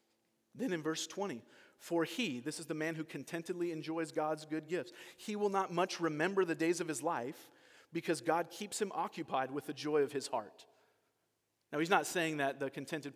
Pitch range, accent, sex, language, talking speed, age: 135-170 Hz, American, male, English, 200 wpm, 40-59